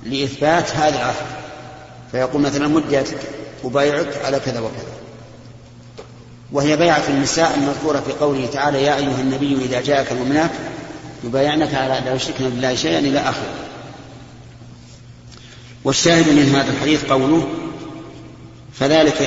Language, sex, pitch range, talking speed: Arabic, male, 125-145 Hz, 120 wpm